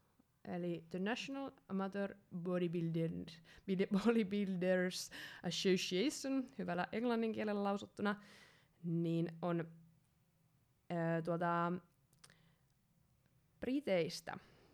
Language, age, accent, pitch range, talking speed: Finnish, 20-39, native, 165-195 Hz, 55 wpm